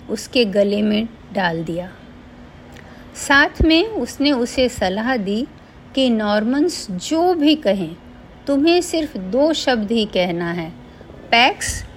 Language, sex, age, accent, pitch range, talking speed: Hindi, female, 50-69, native, 190-255 Hz, 120 wpm